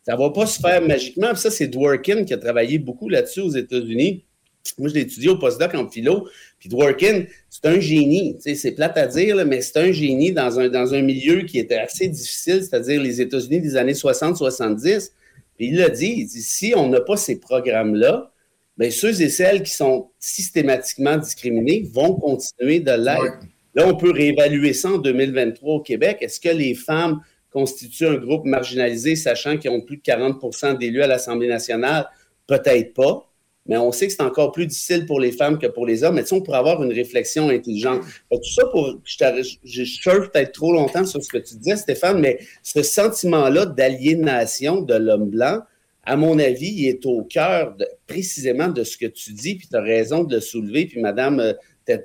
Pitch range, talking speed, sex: 125-175 Hz, 205 wpm, male